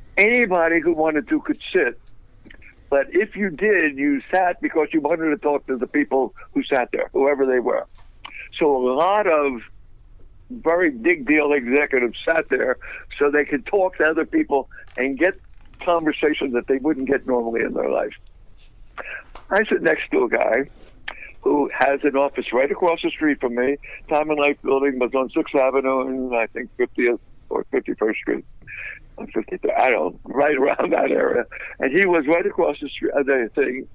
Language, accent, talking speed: English, American, 180 wpm